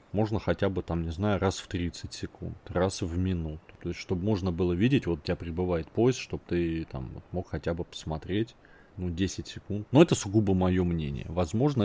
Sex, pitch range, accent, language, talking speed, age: male, 85-110 Hz, native, Russian, 205 wpm, 30-49